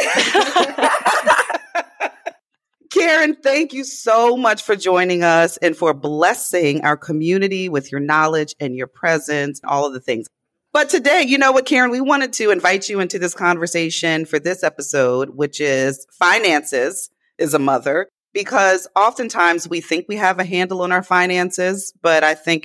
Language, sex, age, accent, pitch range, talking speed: English, female, 30-49, American, 140-190 Hz, 160 wpm